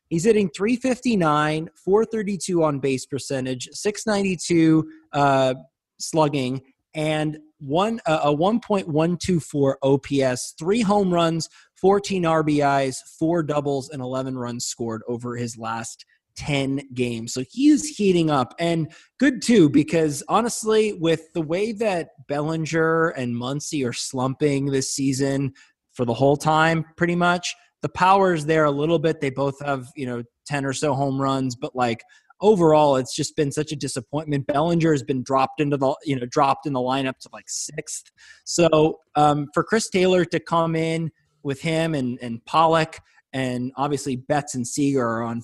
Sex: male